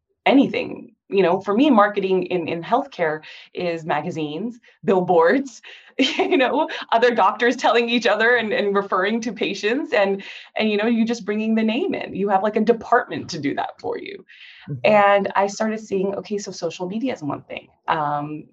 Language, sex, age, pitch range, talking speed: English, female, 20-39, 180-235 Hz, 180 wpm